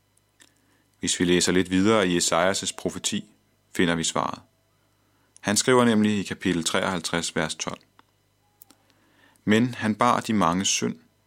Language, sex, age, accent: Danish, male, 30-49, native